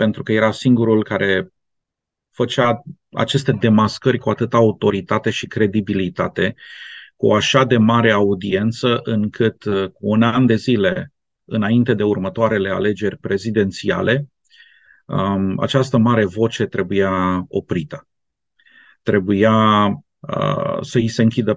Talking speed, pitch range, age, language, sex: 110 wpm, 105-130 Hz, 30-49, Romanian, male